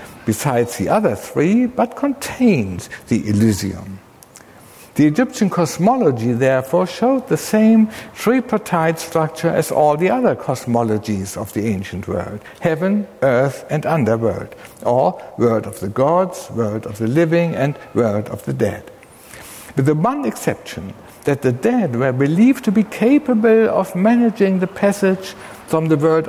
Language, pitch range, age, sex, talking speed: English, 115-180 Hz, 60-79, male, 145 wpm